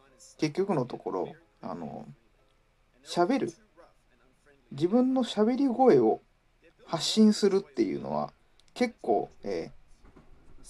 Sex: male